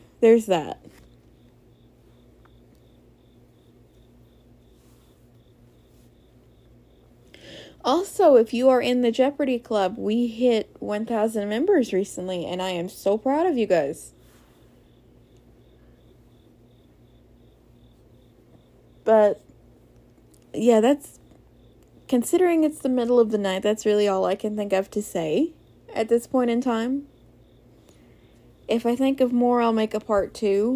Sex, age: female, 20-39